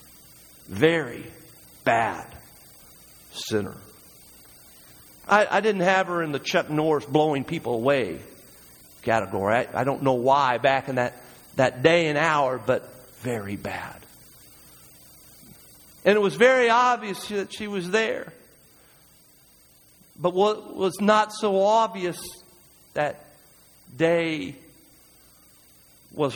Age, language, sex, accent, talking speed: 50-69, English, male, American, 110 wpm